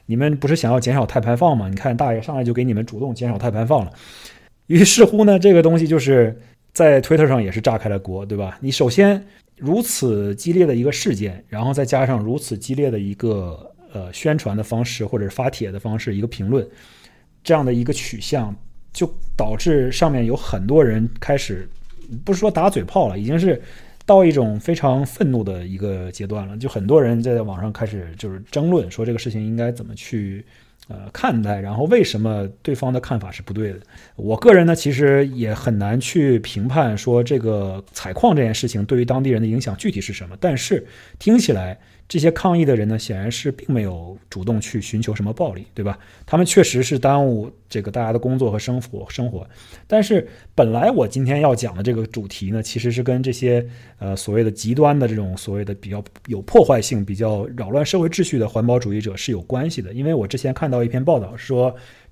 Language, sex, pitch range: Chinese, male, 105-140 Hz